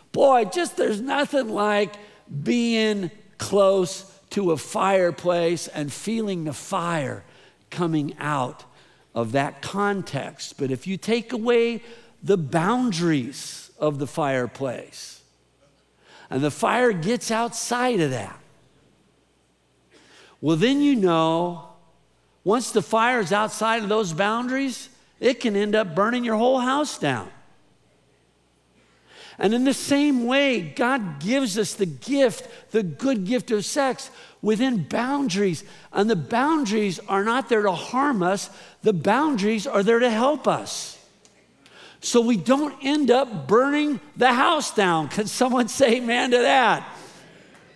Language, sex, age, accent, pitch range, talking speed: English, male, 50-69, American, 170-245 Hz, 130 wpm